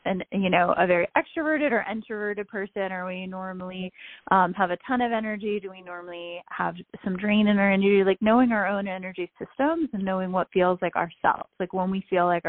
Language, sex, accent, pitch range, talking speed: English, female, American, 175-210 Hz, 210 wpm